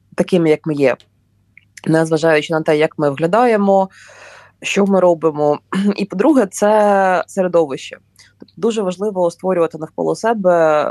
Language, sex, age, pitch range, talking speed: Ukrainian, female, 20-39, 155-190 Hz, 125 wpm